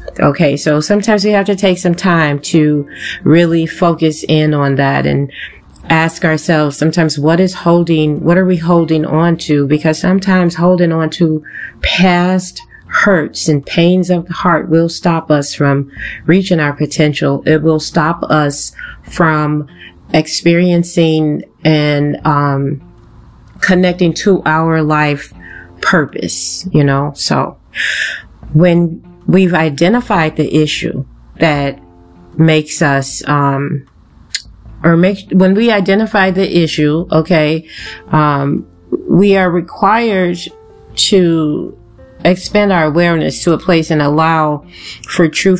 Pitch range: 145-175 Hz